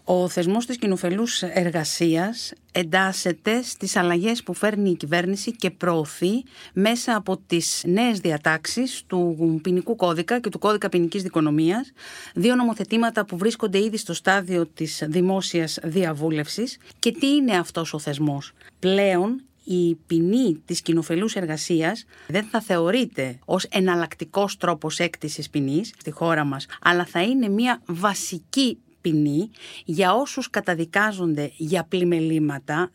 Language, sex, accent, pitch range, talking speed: Greek, female, native, 165-215 Hz, 130 wpm